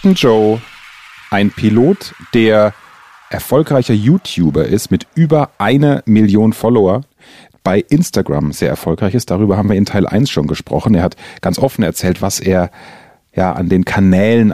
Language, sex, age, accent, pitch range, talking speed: German, male, 40-59, German, 95-125 Hz, 145 wpm